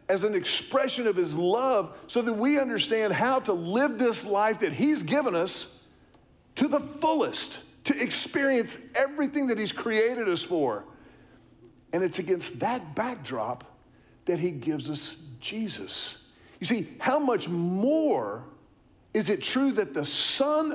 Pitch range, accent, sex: 185-275 Hz, American, male